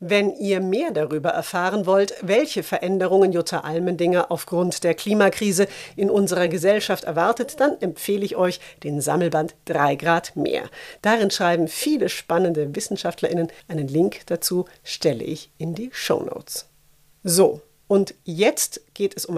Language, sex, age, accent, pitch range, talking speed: German, female, 40-59, German, 170-210 Hz, 140 wpm